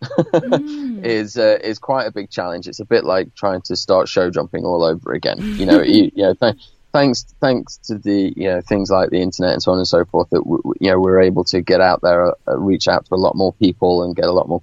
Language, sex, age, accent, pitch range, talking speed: English, male, 30-49, British, 95-115 Hz, 265 wpm